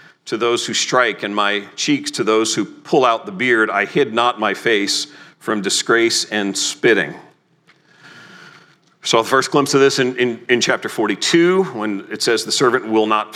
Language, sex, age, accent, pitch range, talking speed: English, male, 40-59, American, 120-155 Hz, 180 wpm